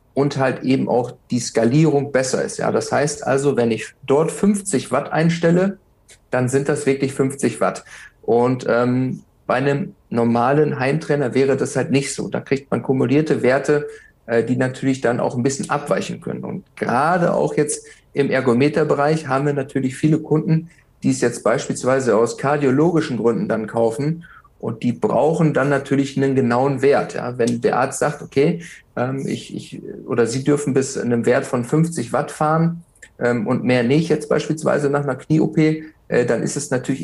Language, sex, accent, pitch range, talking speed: German, male, German, 125-155 Hz, 175 wpm